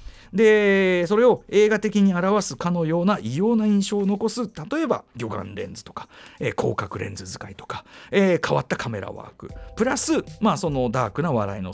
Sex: male